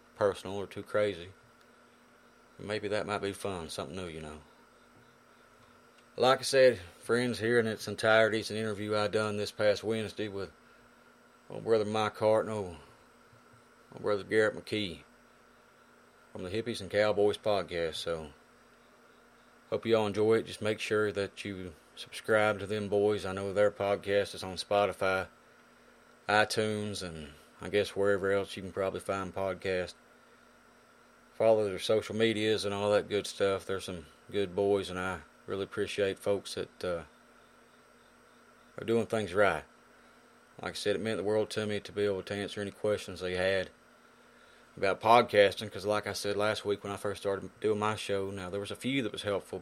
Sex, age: male, 30-49